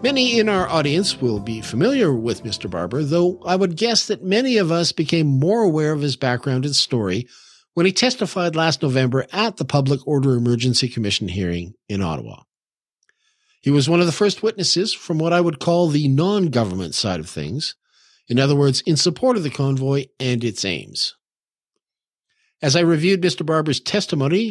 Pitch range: 130-185 Hz